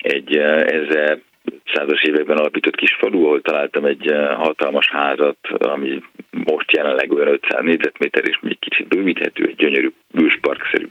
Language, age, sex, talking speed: Hungarian, 40-59, male, 140 wpm